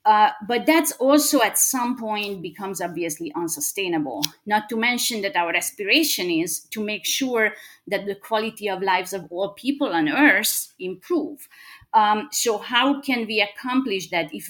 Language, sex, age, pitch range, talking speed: English, female, 30-49, 180-230 Hz, 160 wpm